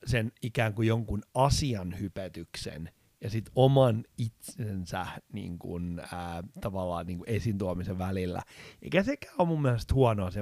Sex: male